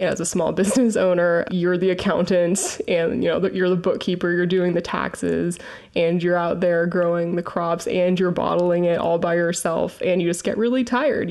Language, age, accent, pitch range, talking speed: English, 20-39, American, 165-195 Hz, 200 wpm